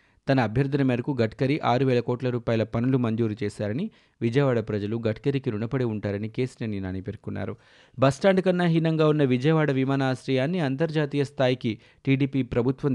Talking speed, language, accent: 135 wpm, Telugu, native